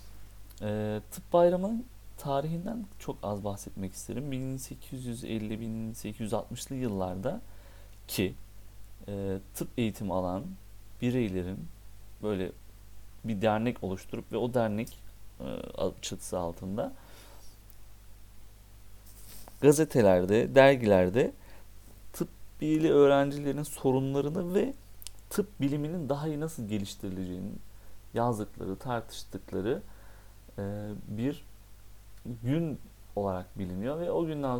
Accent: native